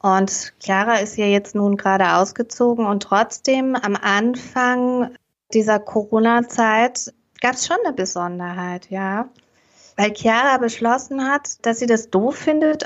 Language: German